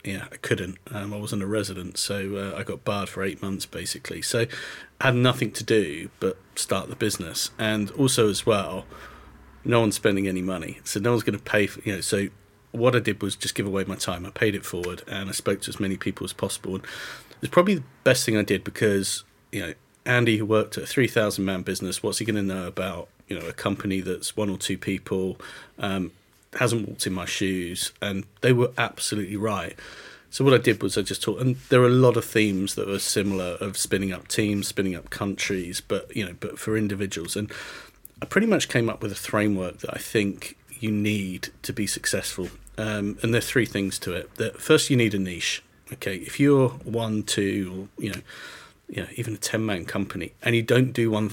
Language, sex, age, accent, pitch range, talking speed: English, male, 40-59, British, 95-115 Hz, 225 wpm